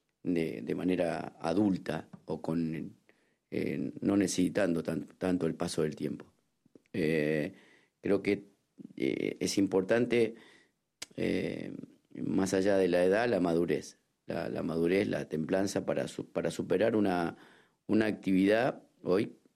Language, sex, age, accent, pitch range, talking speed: French, male, 50-69, Argentinian, 85-100 Hz, 125 wpm